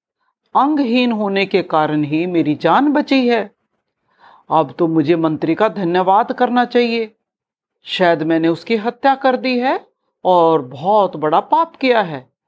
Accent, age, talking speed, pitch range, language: native, 50-69, 145 wpm, 170-265 Hz, Hindi